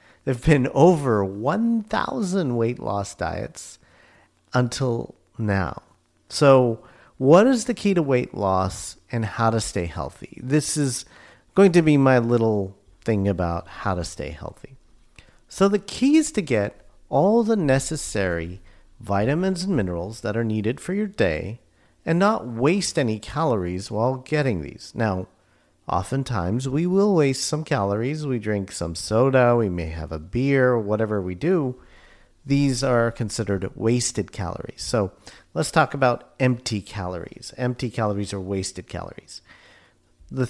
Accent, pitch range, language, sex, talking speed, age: American, 100-140 Hz, English, male, 145 wpm, 50-69